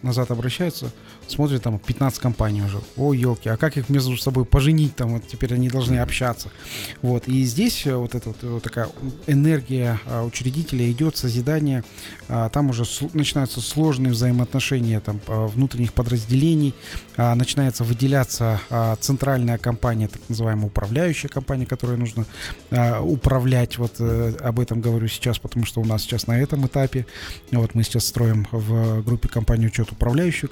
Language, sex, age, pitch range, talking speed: Russian, male, 30-49, 115-135 Hz, 145 wpm